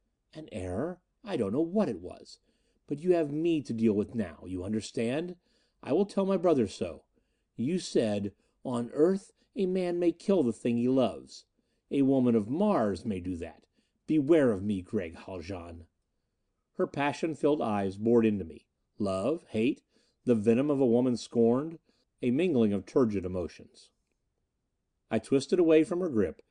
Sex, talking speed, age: male, 165 wpm, 40-59